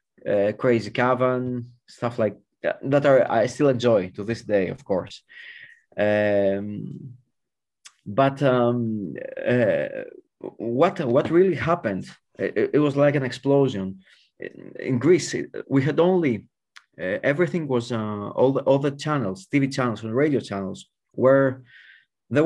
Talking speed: 140 wpm